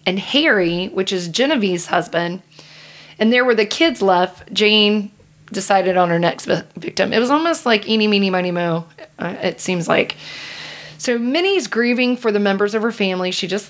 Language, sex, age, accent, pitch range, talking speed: English, female, 30-49, American, 180-220 Hz, 180 wpm